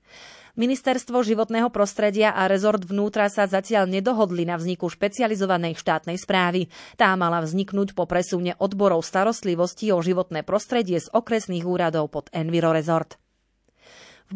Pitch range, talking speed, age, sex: 180-225 Hz, 130 wpm, 30-49, female